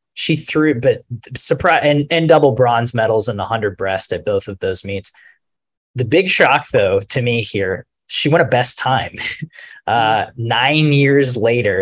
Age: 20-39